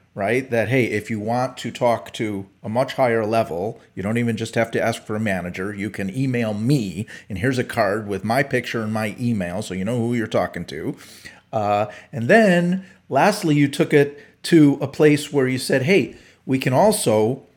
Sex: male